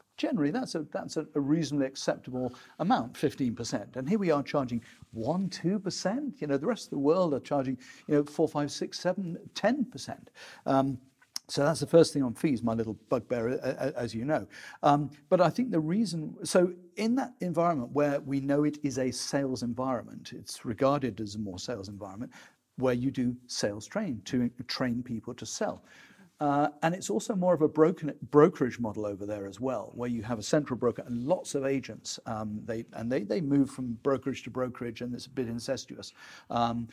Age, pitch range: 50-69, 125-160 Hz